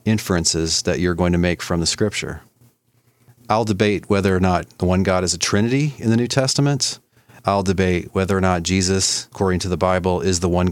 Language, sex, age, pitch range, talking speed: English, male, 40-59, 90-110 Hz, 205 wpm